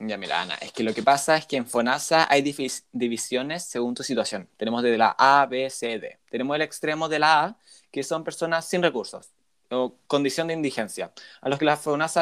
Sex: male